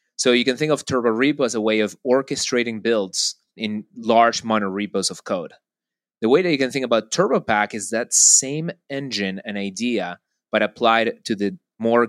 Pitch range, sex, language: 100-120 Hz, male, English